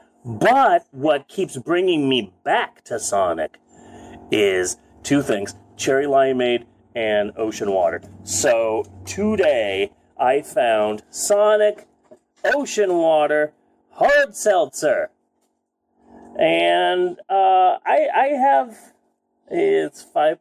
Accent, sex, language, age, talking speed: American, male, English, 30-49, 95 wpm